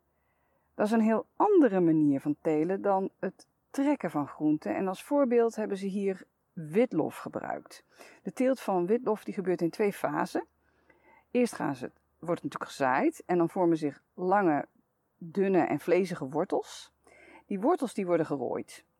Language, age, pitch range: Dutch, 40-59, 140-225 Hz